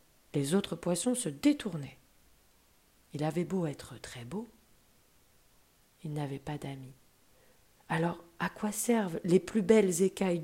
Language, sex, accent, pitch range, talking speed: French, female, French, 155-220 Hz, 130 wpm